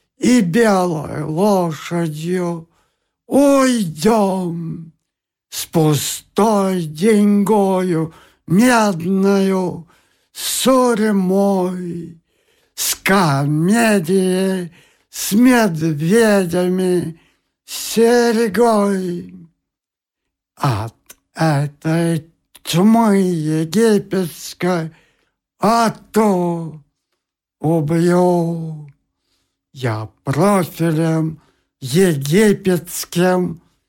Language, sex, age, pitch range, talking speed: Russian, male, 60-79, 160-200 Hz, 45 wpm